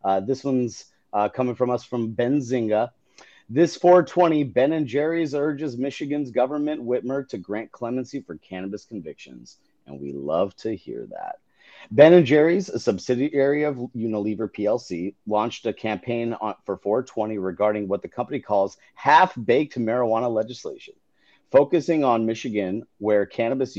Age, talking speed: 30-49, 145 wpm